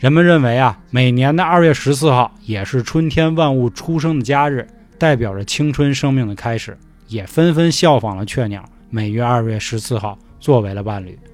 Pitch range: 115-165 Hz